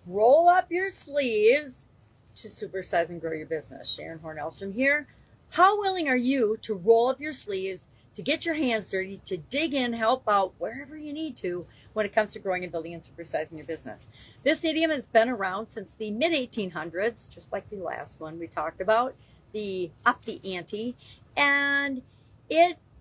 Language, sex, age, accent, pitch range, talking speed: English, female, 40-59, American, 185-260 Hz, 180 wpm